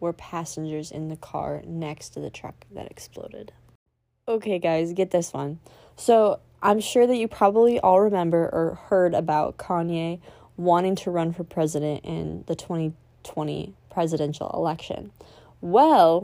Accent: American